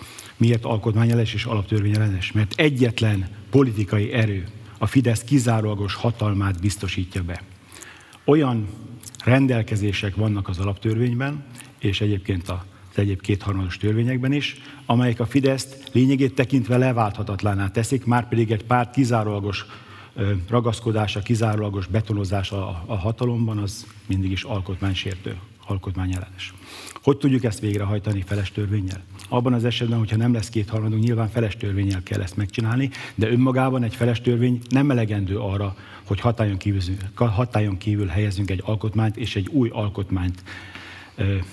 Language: Hungarian